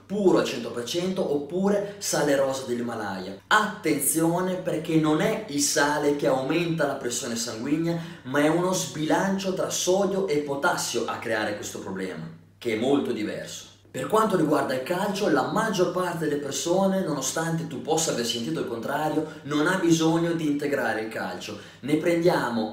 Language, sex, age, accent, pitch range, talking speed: Italian, male, 30-49, native, 145-185 Hz, 160 wpm